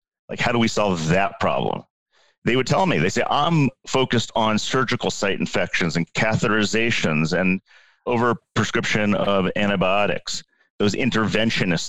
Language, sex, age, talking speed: English, male, 40-59, 140 wpm